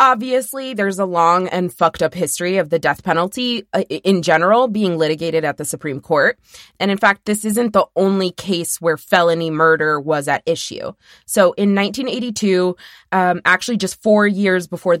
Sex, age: female, 20-39